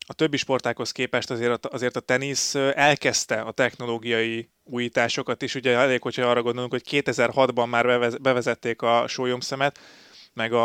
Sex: male